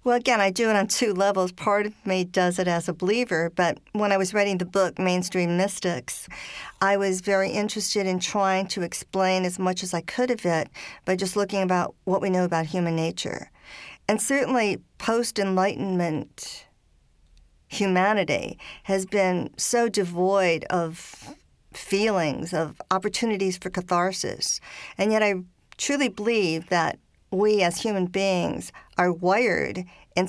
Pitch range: 175-205 Hz